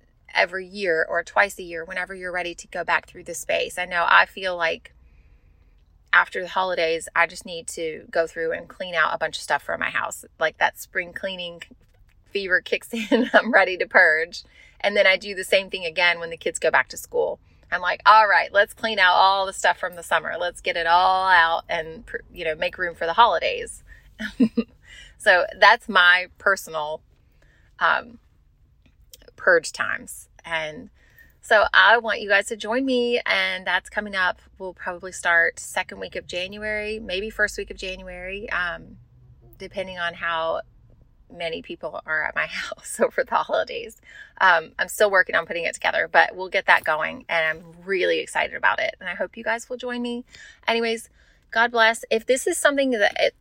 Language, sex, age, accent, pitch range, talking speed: English, female, 30-49, American, 170-225 Hz, 190 wpm